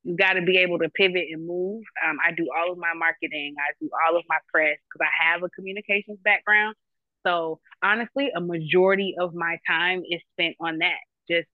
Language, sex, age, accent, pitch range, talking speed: English, female, 20-39, American, 160-190 Hz, 210 wpm